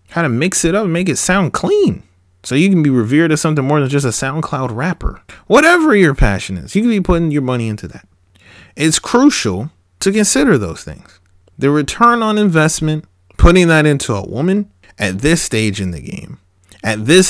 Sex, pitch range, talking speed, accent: male, 95-150 Hz, 200 wpm, American